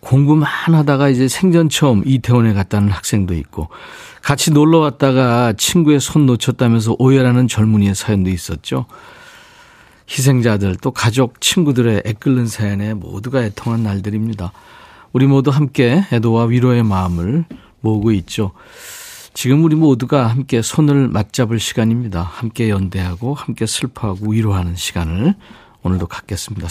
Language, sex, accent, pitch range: Korean, male, native, 105-145 Hz